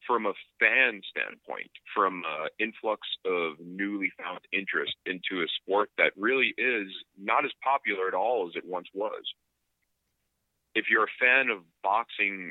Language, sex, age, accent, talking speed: English, male, 40-59, American, 155 wpm